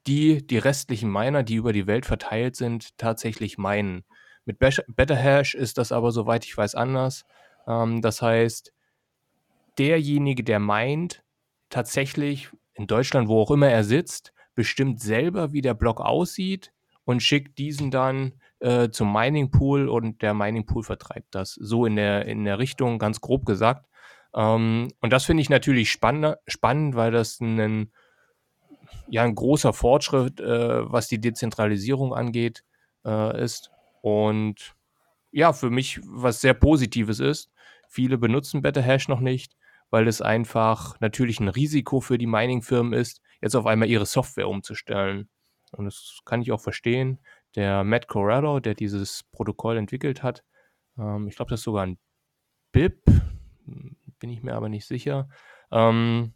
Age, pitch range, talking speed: 30-49, 110-135 Hz, 150 wpm